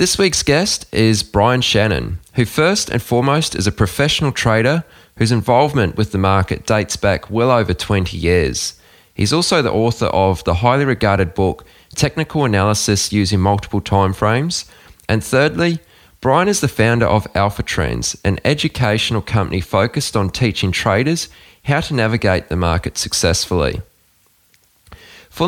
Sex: male